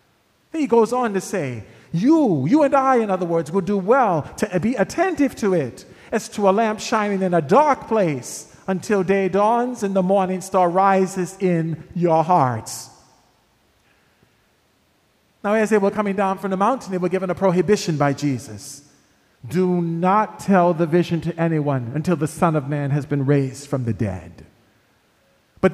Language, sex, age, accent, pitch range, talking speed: English, male, 40-59, American, 145-205 Hz, 175 wpm